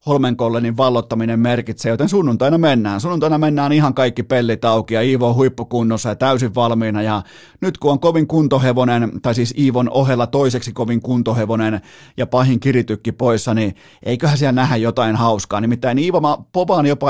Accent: native